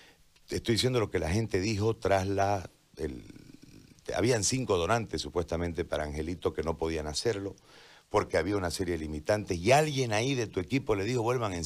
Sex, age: male, 50-69